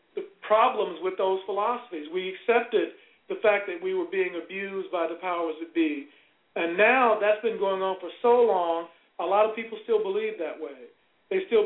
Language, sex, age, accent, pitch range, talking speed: English, male, 40-59, American, 180-220 Hz, 195 wpm